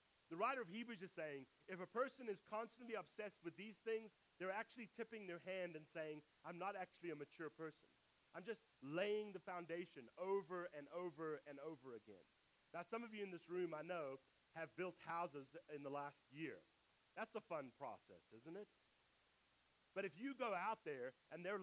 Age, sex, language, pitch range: 40-59, male, English, 160-210 Hz